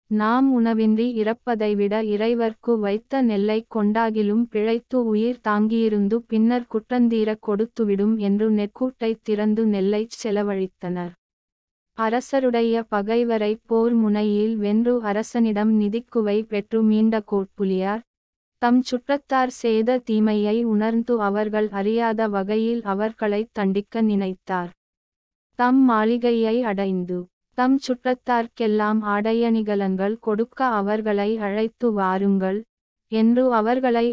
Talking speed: 45 wpm